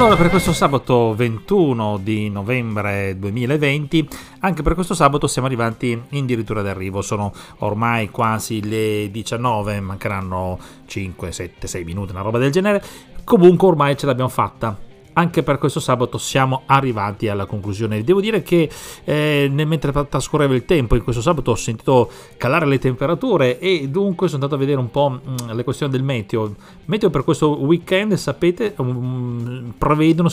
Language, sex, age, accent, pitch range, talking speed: Italian, male, 40-59, native, 110-155 Hz, 160 wpm